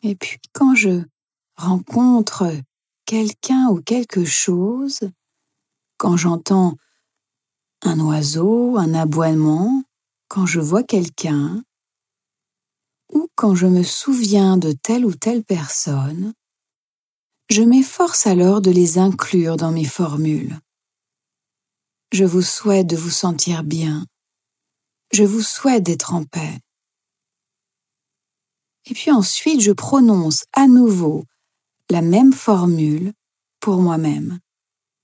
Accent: French